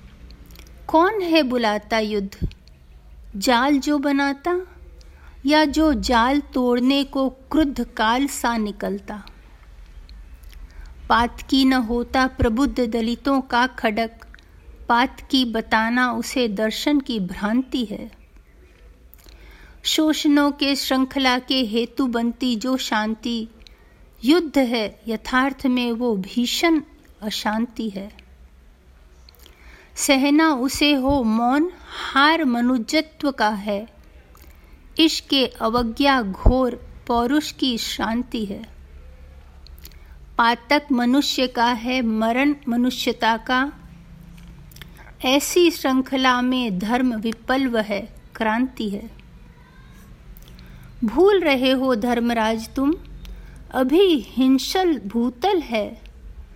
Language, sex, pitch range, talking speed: Hindi, female, 200-270 Hz, 95 wpm